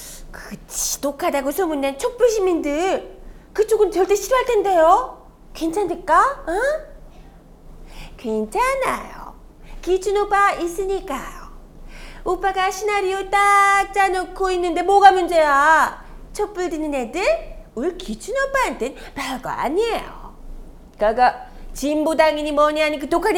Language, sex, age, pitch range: Korean, female, 30-49, 315-405 Hz